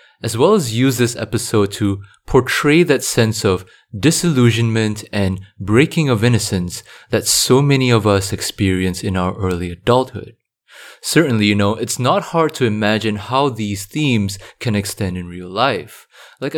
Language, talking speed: English, 155 wpm